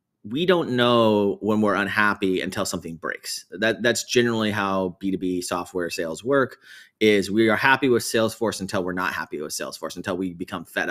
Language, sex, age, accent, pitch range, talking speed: English, male, 30-49, American, 90-110 Hz, 180 wpm